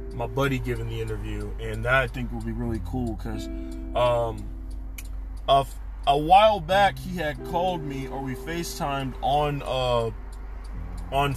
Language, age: English, 20-39